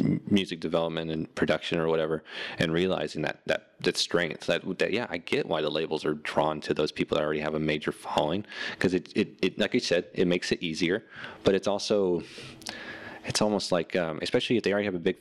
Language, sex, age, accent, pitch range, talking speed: English, male, 30-49, American, 80-95 Hz, 220 wpm